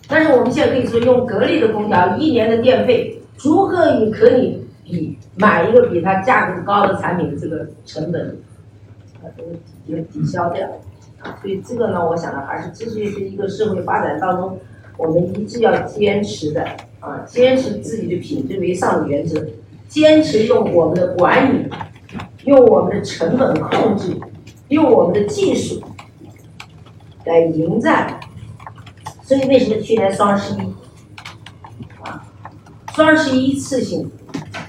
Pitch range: 145-240 Hz